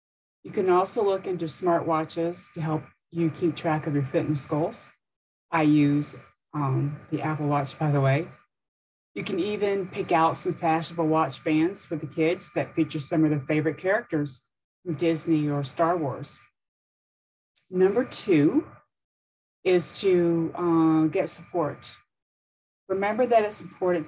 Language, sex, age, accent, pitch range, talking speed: English, female, 40-59, American, 150-185 Hz, 150 wpm